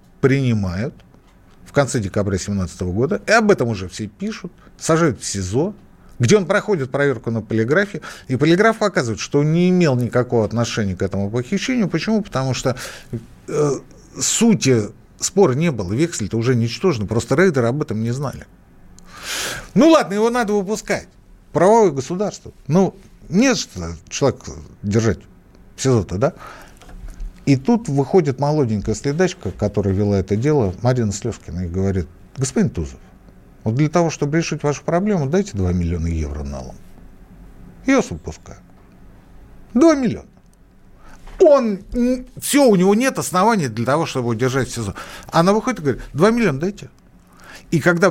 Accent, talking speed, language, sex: native, 145 wpm, Russian, male